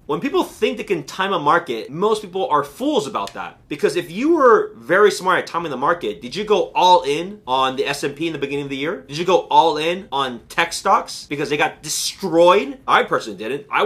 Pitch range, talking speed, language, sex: 145-215 Hz, 235 wpm, English, male